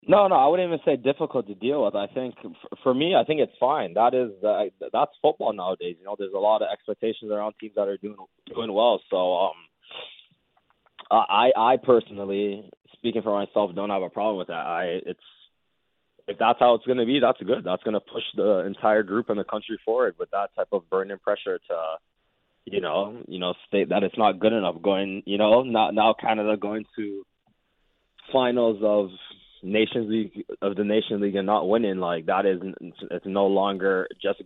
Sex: male